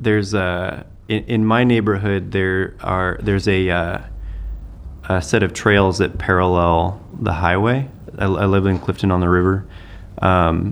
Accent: American